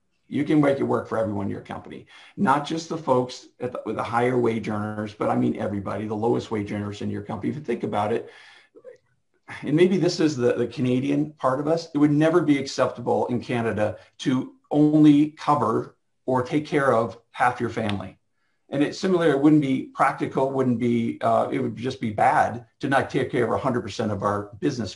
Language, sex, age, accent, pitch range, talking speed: English, male, 50-69, American, 110-150 Hz, 195 wpm